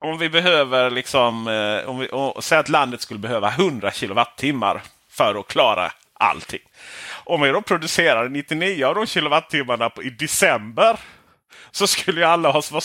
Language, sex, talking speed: Swedish, male, 155 wpm